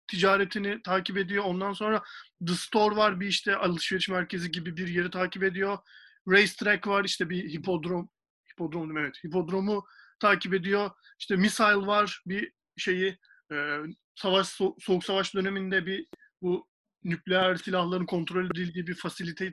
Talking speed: 140 wpm